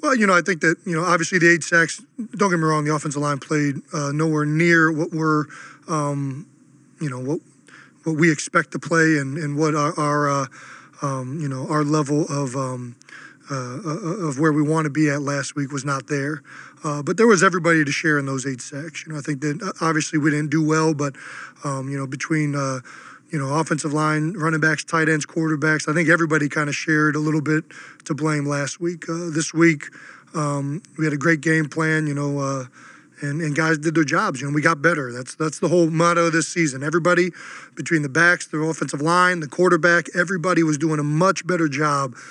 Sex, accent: male, American